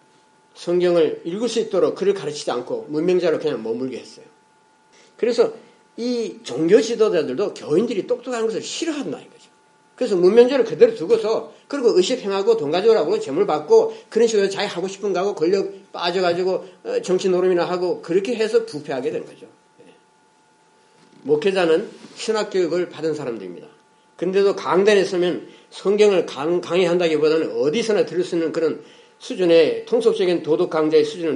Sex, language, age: male, Korean, 40-59